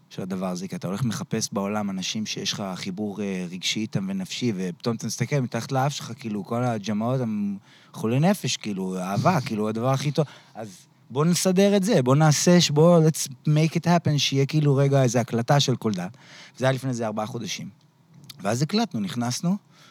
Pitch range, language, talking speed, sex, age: 115-160 Hz, Hebrew, 180 wpm, male, 30-49